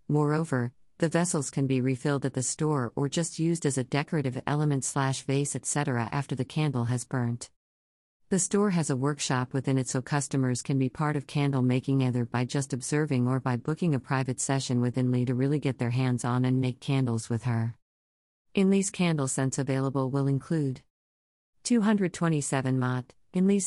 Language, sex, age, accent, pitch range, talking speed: English, female, 50-69, American, 125-155 Hz, 180 wpm